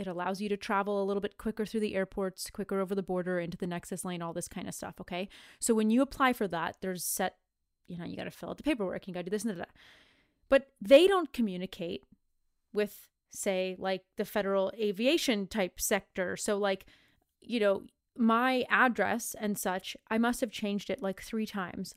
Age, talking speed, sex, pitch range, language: 20-39, 215 wpm, female, 190-255 Hz, English